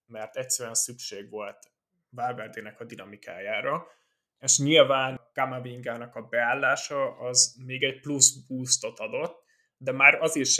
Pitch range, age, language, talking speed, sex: 115-130 Hz, 20-39, Hungarian, 125 wpm, male